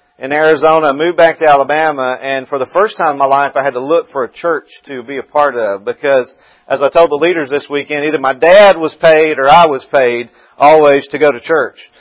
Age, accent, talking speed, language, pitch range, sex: 40-59, American, 240 wpm, English, 130-170 Hz, male